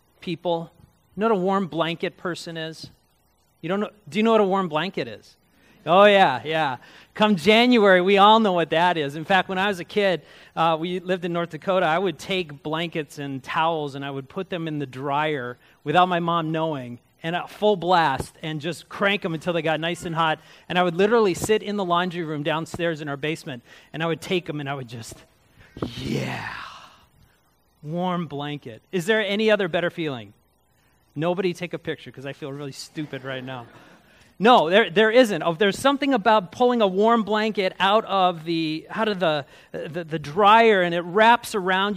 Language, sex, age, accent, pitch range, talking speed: English, male, 30-49, American, 160-215 Hz, 205 wpm